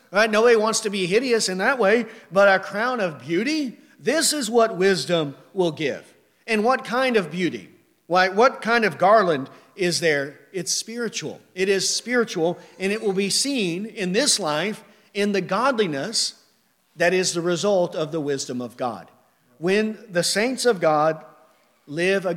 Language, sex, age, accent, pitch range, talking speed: English, male, 50-69, American, 155-205 Hz, 170 wpm